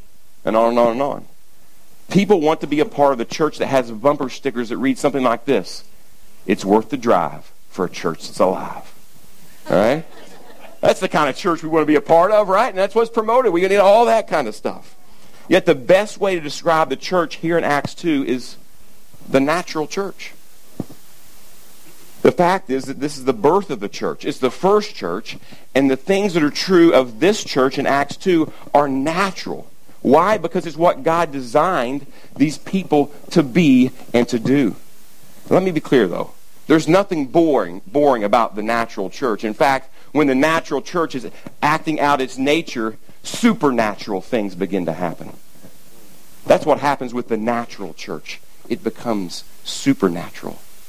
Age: 50-69